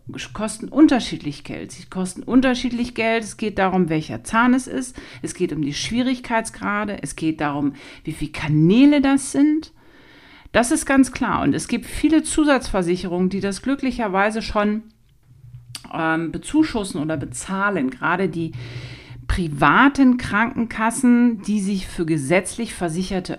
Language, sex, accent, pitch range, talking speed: German, female, German, 155-235 Hz, 135 wpm